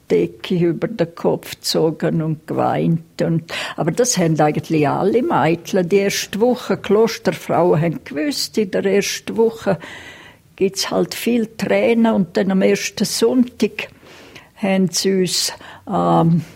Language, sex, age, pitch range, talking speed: German, female, 60-79, 170-215 Hz, 140 wpm